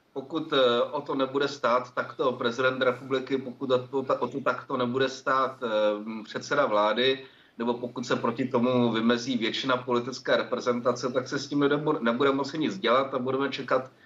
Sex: male